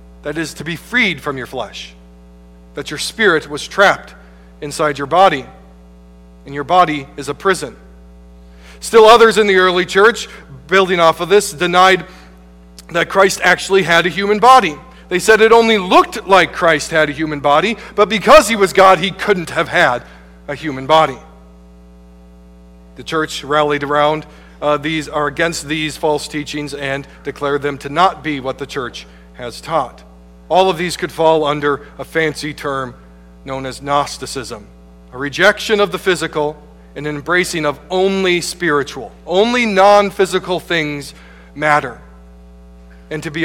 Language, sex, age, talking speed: English, male, 40-59, 160 wpm